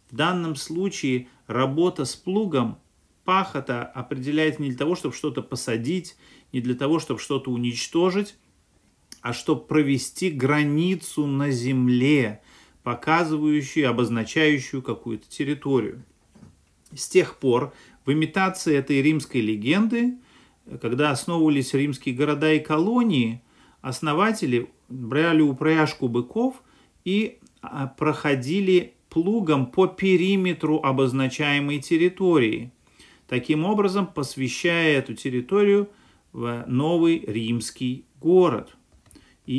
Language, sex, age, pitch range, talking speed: Russian, male, 40-59, 120-165 Hz, 95 wpm